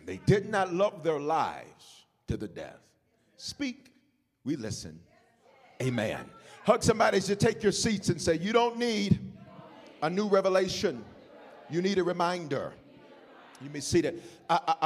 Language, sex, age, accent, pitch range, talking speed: English, male, 40-59, American, 130-180 Hz, 150 wpm